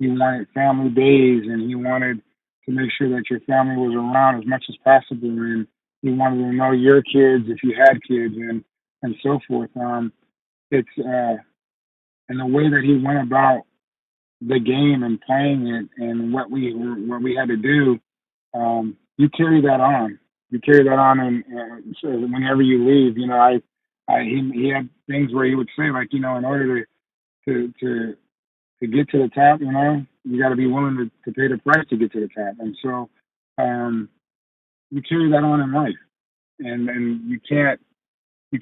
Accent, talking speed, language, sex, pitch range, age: American, 195 wpm, English, male, 120-135 Hz, 30-49